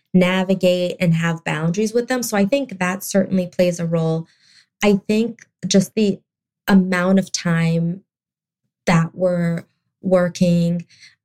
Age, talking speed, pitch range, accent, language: 20-39, 130 wpm, 170-205 Hz, American, English